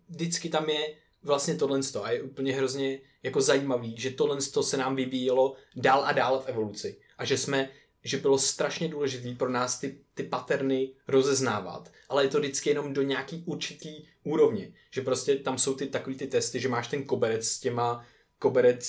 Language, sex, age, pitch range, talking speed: Czech, male, 20-39, 120-140 Hz, 185 wpm